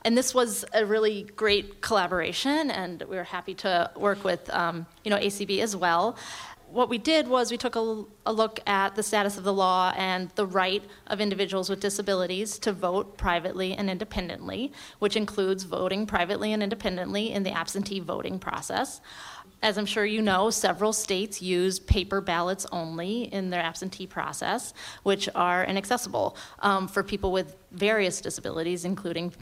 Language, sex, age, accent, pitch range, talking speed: English, female, 30-49, American, 175-210 Hz, 170 wpm